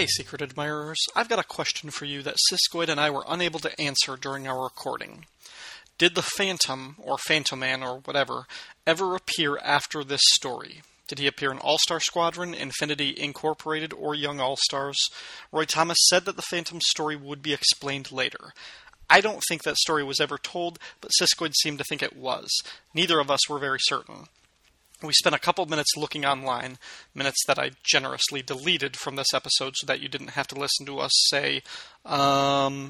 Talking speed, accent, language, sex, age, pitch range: 185 wpm, American, English, male, 30-49, 140-170 Hz